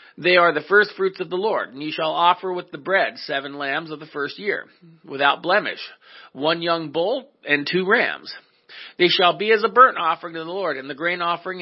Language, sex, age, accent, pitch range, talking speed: English, male, 40-59, American, 155-195 Hz, 220 wpm